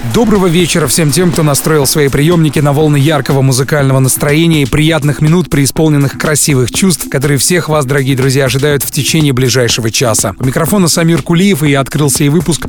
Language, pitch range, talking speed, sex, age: Russian, 135-165 Hz, 175 wpm, male, 30-49